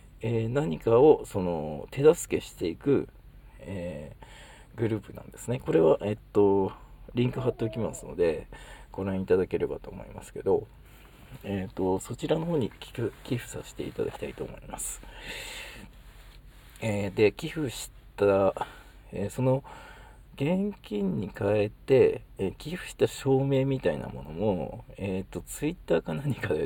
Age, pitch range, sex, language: 40-59, 100-150 Hz, male, Japanese